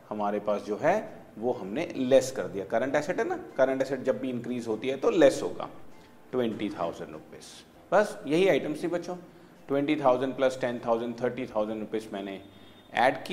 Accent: native